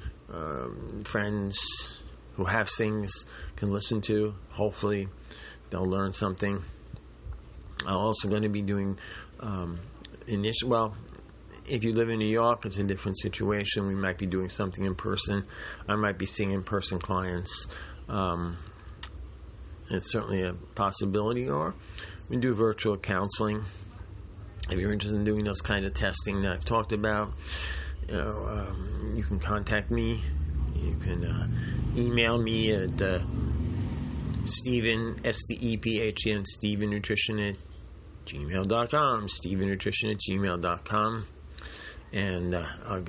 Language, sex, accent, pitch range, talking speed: English, male, American, 90-110 Hz, 135 wpm